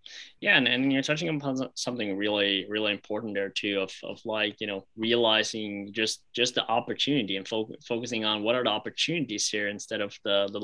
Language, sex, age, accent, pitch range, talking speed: English, male, 20-39, American, 110-145 Hz, 190 wpm